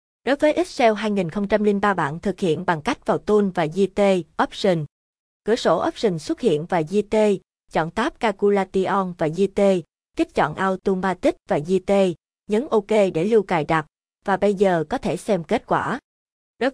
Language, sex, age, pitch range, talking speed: Vietnamese, female, 20-39, 180-225 Hz, 165 wpm